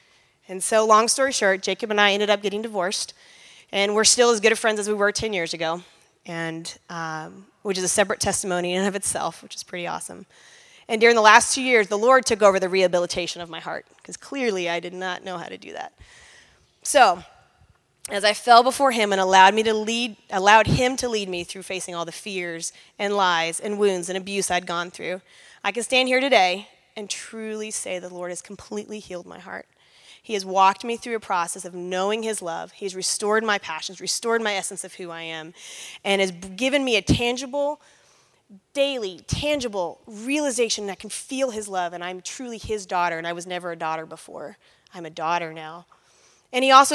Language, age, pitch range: English, 20-39, 180-225 Hz